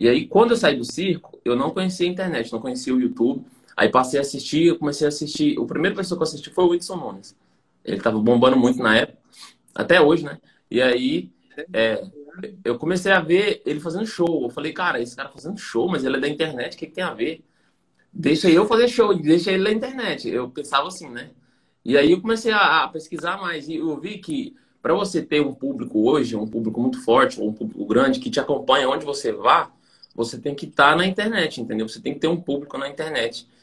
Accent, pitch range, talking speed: Brazilian, 120-175 Hz, 230 wpm